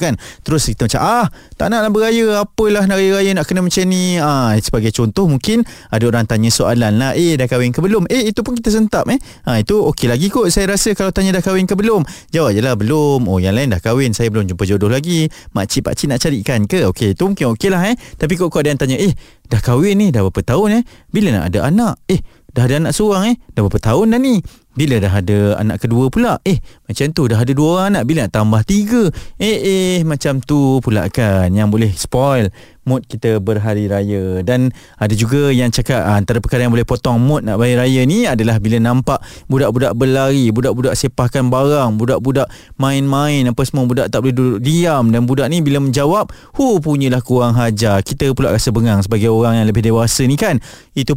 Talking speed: 220 wpm